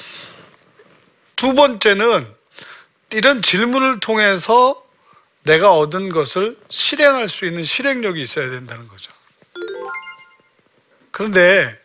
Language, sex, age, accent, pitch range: Korean, male, 40-59, native, 150-220 Hz